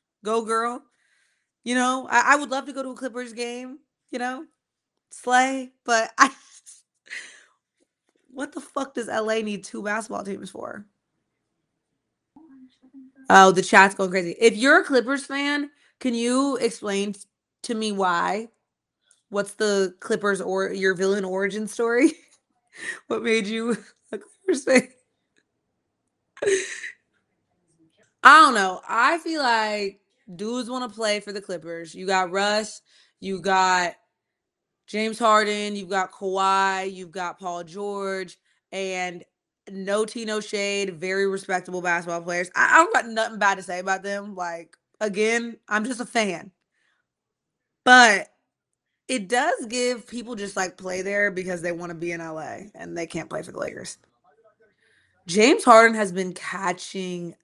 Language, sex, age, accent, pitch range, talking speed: English, female, 20-39, American, 190-250 Hz, 145 wpm